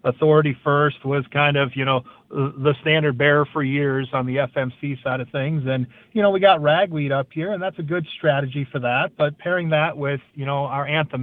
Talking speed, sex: 220 wpm, male